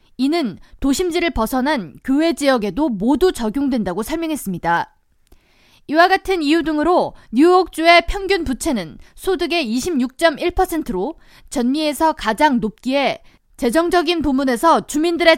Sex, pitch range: female, 250-335 Hz